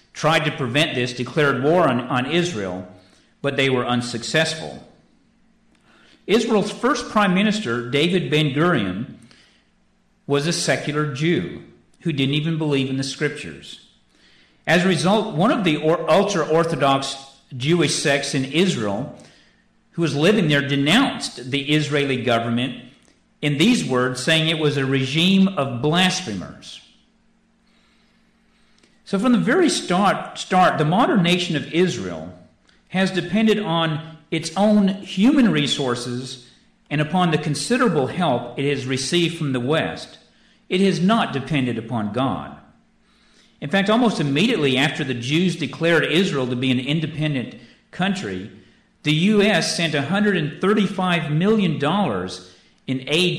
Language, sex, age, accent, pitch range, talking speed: English, male, 50-69, American, 135-190 Hz, 130 wpm